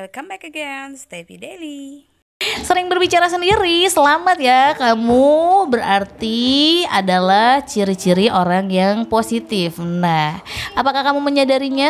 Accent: native